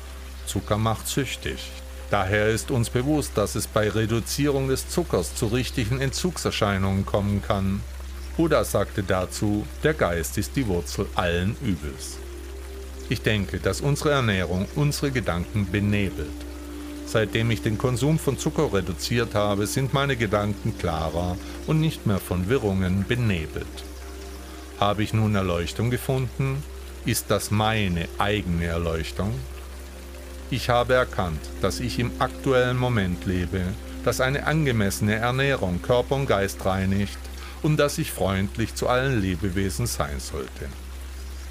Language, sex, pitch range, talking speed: German, male, 75-120 Hz, 130 wpm